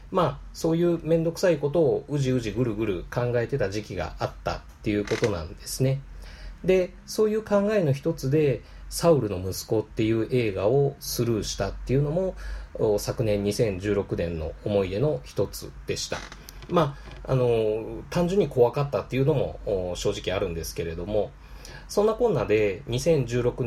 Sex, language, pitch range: male, Japanese, 105-175 Hz